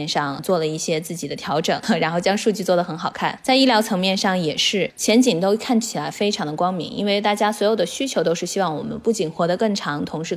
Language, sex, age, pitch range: Chinese, female, 20-39, 170-225 Hz